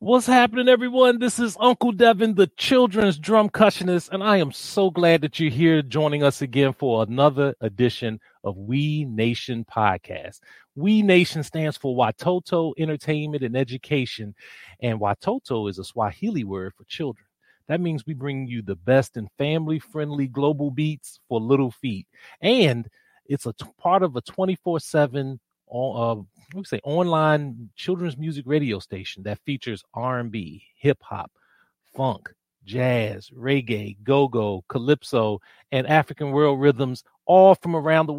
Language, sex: English, male